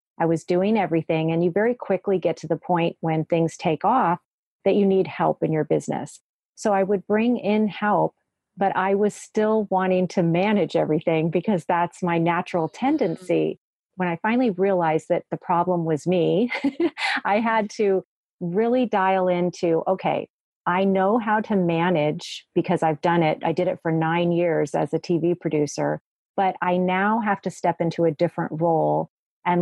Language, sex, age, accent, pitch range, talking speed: English, female, 40-59, American, 165-200 Hz, 180 wpm